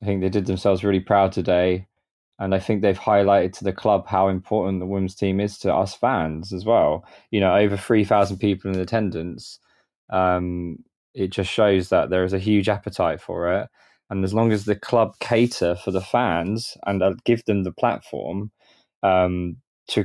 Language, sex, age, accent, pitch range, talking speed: English, male, 20-39, British, 95-110 Hz, 190 wpm